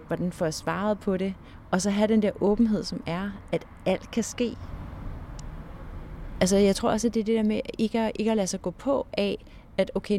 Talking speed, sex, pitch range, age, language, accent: 235 wpm, female, 170-225 Hz, 30-49, Danish, native